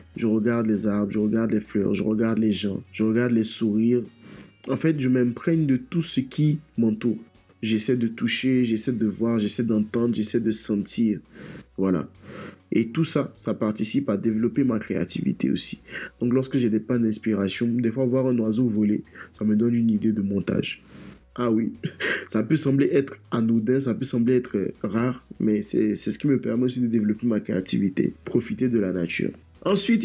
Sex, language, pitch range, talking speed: male, French, 110-135 Hz, 190 wpm